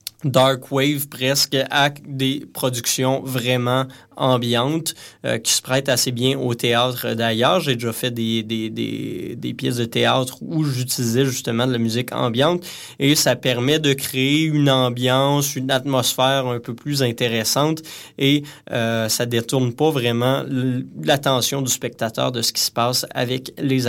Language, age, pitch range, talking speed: French, 20-39, 120-145 Hz, 165 wpm